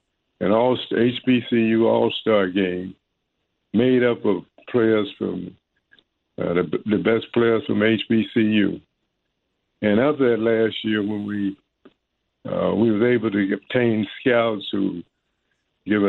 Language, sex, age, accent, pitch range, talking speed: English, male, 60-79, American, 105-125 Hz, 125 wpm